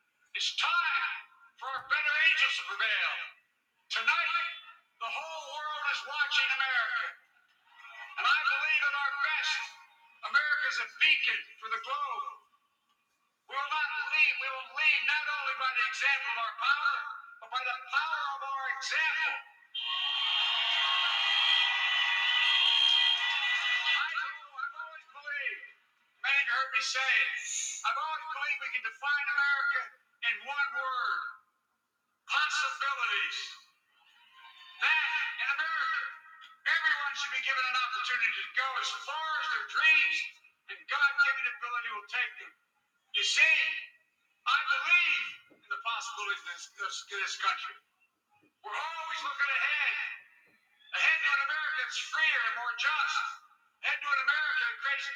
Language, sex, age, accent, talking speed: English, male, 60-79, American, 135 wpm